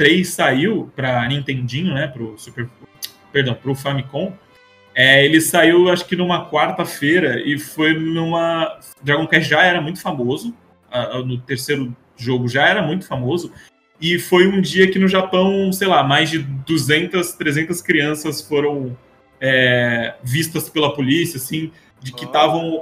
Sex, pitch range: male, 135-180 Hz